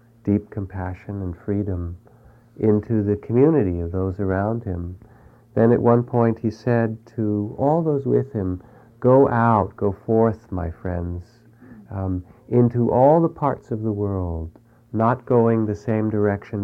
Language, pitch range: English, 95-115 Hz